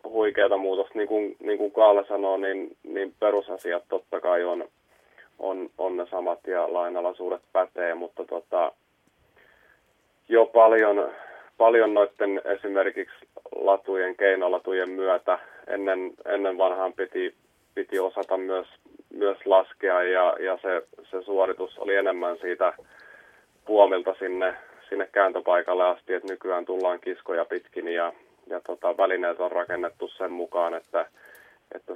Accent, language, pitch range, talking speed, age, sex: native, Finnish, 90-105 Hz, 130 wpm, 30-49, male